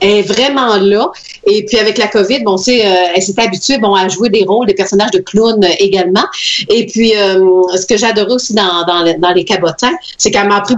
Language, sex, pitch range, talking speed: French, female, 185-245 Hz, 230 wpm